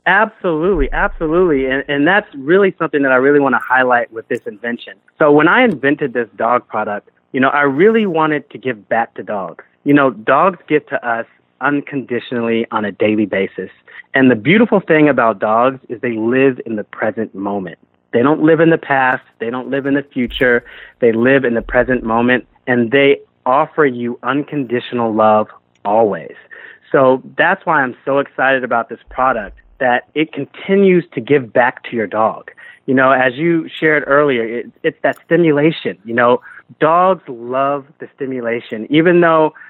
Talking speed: 180 wpm